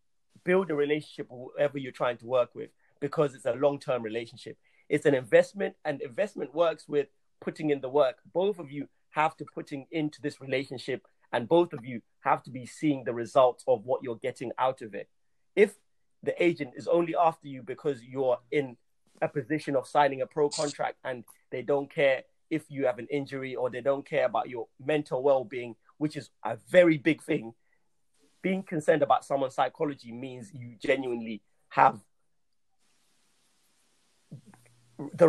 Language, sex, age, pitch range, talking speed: English, male, 30-49, 130-160 Hz, 175 wpm